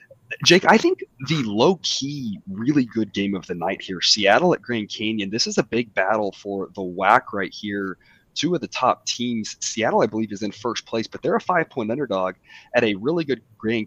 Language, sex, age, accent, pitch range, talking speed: English, male, 30-49, American, 100-130 Hz, 210 wpm